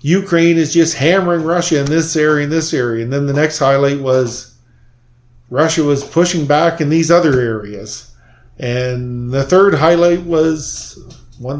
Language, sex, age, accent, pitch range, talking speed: English, male, 40-59, American, 125-160 Hz, 160 wpm